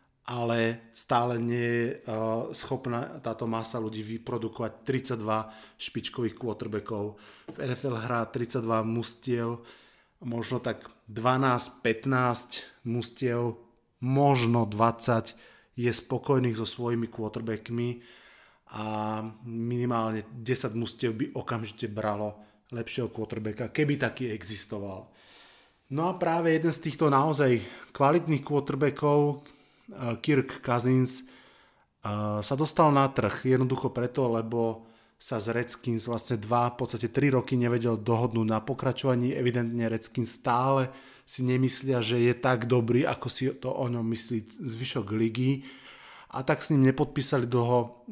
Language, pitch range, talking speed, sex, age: Slovak, 115-130 Hz, 115 wpm, male, 30-49